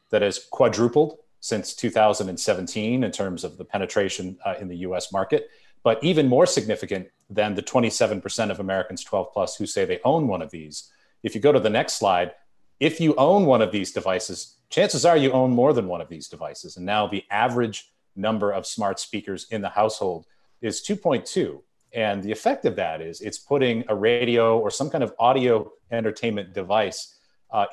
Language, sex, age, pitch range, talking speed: English, male, 40-59, 105-145 Hz, 190 wpm